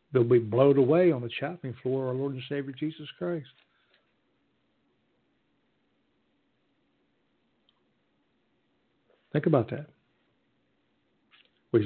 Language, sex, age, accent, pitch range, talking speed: English, male, 60-79, American, 130-180 Hz, 95 wpm